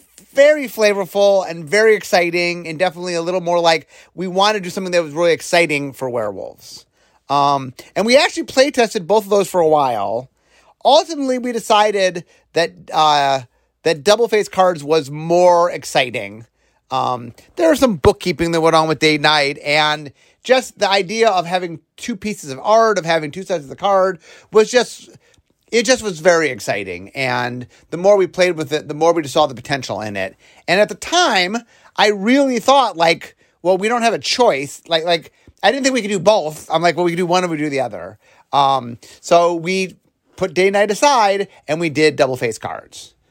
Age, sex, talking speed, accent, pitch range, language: 30-49, male, 205 wpm, American, 155-205 Hz, English